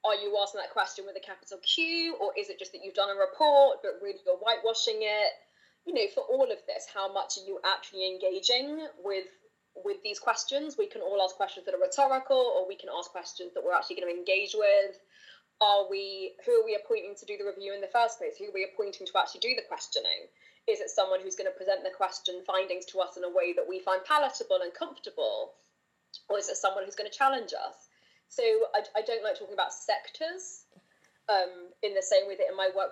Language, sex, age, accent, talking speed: English, female, 20-39, British, 235 wpm